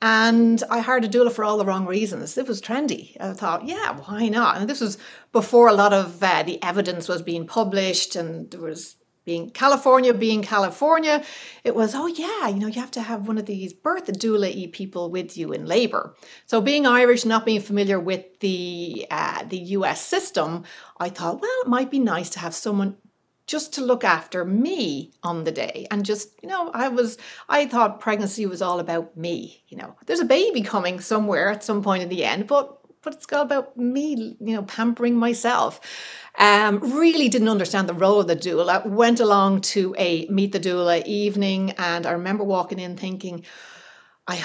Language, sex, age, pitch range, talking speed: English, female, 60-79, 180-235 Hz, 200 wpm